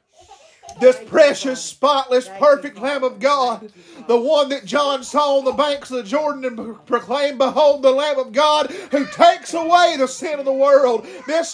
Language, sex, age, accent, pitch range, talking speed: English, male, 50-69, American, 280-325 Hz, 175 wpm